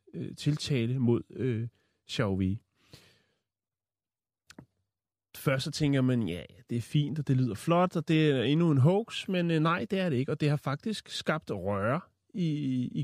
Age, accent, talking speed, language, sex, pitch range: 30-49, native, 170 wpm, Danish, male, 115-160 Hz